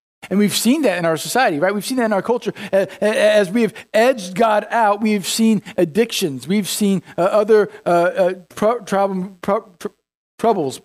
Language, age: English, 50-69